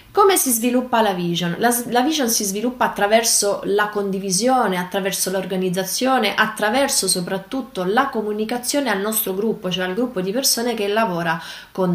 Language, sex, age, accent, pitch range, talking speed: Italian, female, 20-39, native, 185-250 Hz, 150 wpm